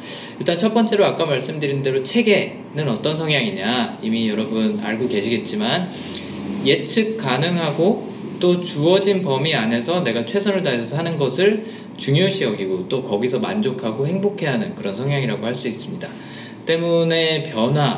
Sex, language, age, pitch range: male, Korean, 20-39, 125-195 Hz